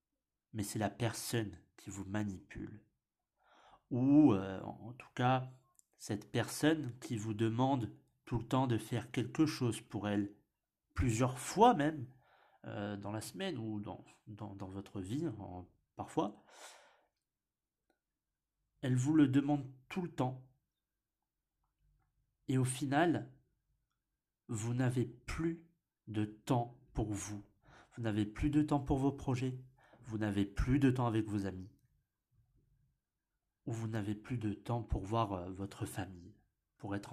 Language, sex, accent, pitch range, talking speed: French, male, French, 105-140 Hz, 140 wpm